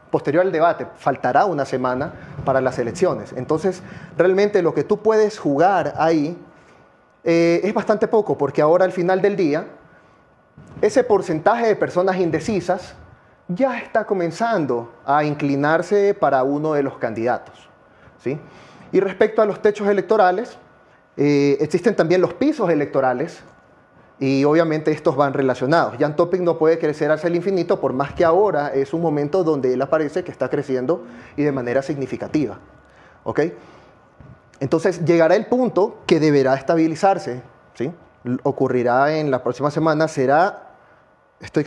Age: 30-49